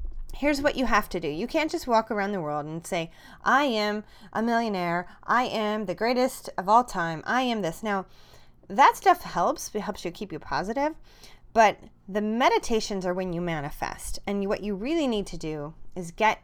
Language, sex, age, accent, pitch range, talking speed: English, female, 30-49, American, 160-225 Hz, 200 wpm